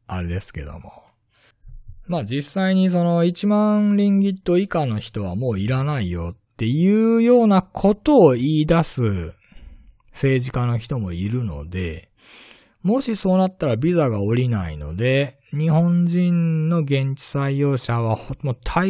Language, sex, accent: Japanese, male, native